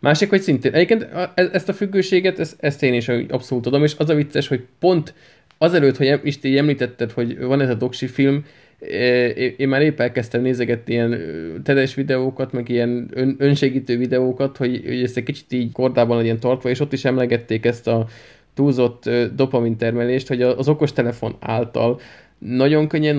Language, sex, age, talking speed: Hungarian, male, 20-39, 170 wpm